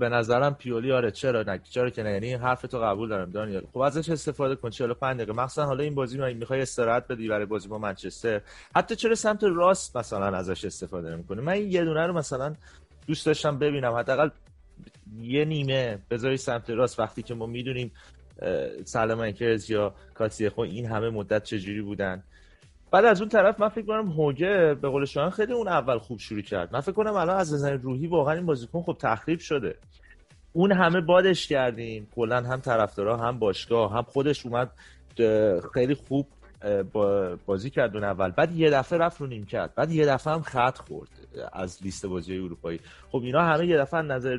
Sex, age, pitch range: male, 30-49, 105-150 Hz